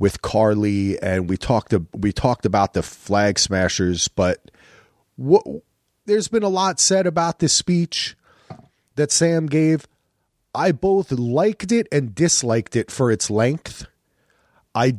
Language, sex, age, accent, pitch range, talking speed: English, male, 30-49, American, 110-160 Hz, 140 wpm